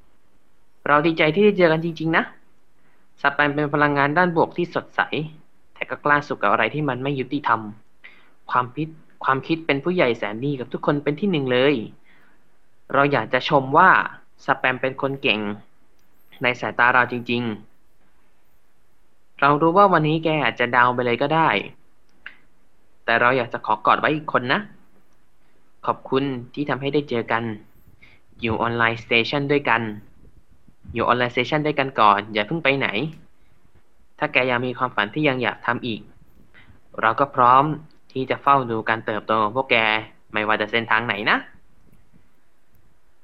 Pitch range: 115-145 Hz